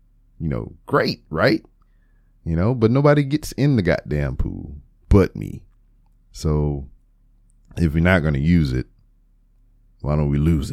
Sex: male